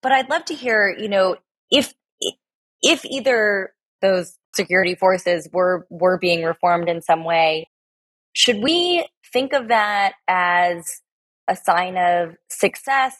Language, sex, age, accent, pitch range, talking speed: English, female, 20-39, American, 170-205 Hz, 135 wpm